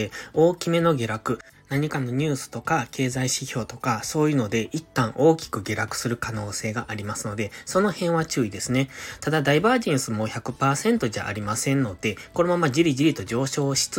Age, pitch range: 20-39, 120-165 Hz